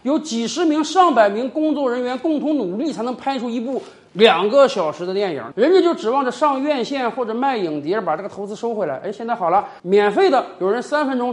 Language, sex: Chinese, male